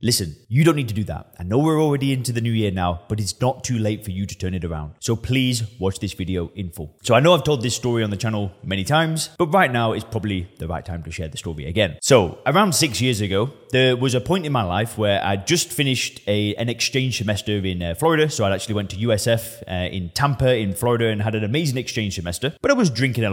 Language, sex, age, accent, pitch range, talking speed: English, male, 20-39, British, 105-130 Hz, 265 wpm